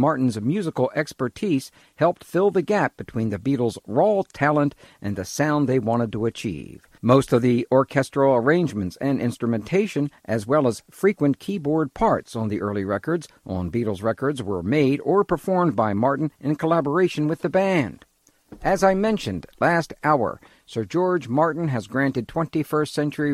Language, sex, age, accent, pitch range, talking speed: English, male, 50-69, American, 115-150 Hz, 160 wpm